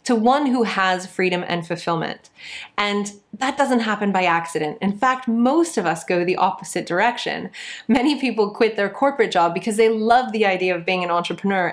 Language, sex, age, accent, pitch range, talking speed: English, female, 20-39, American, 175-230 Hz, 190 wpm